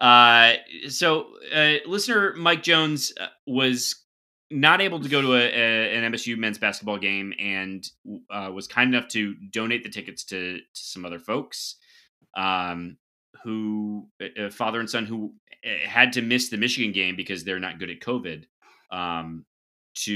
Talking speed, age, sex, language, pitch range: 160 wpm, 20-39, male, English, 95-140 Hz